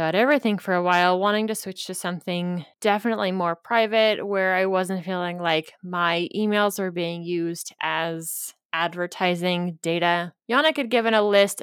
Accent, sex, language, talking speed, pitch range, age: American, female, English, 160 wpm, 175-225 Hz, 20-39